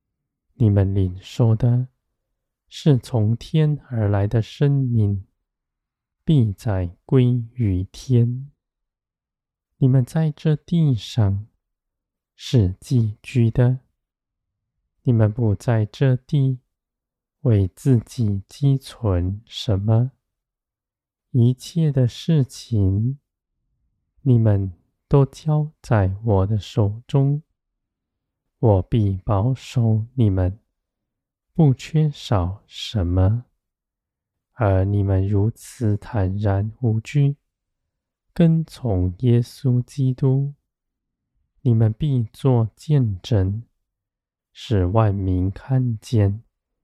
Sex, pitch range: male, 100-130 Hz